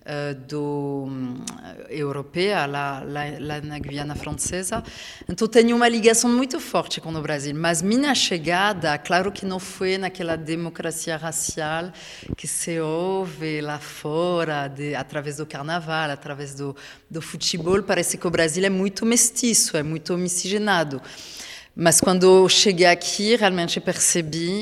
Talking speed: 140 wpm